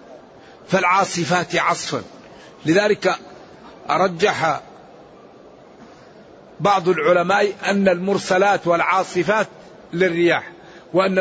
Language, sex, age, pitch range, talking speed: Arabic, male, 50-69, 175-200 Hz, 60 wpm